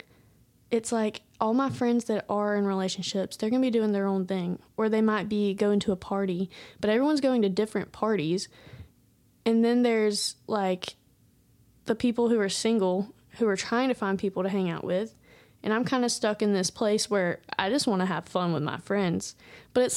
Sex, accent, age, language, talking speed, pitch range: female, American, 20-39, English, 210 wpm, 200-235 Hz